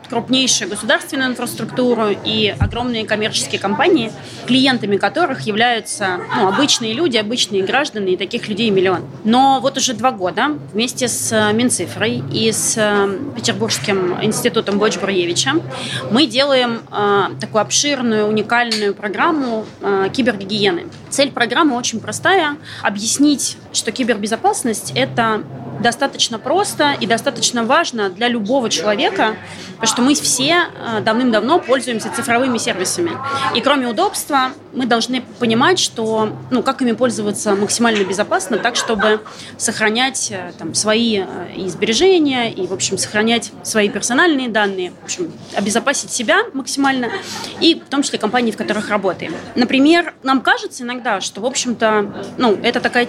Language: Russian